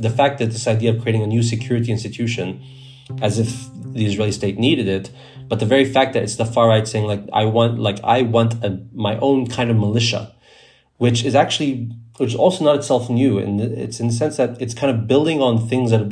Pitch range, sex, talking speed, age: 105-120 Hz, male, 230 wpm, 30-49